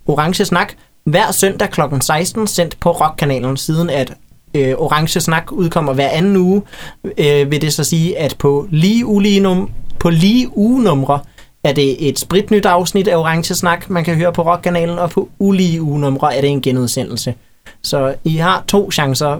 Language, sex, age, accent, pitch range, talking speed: Danish, male, 30-49, native, 140-180 Hz, 175 wpm